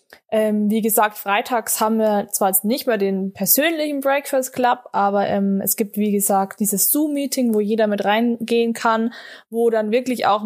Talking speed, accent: 180 wpm, German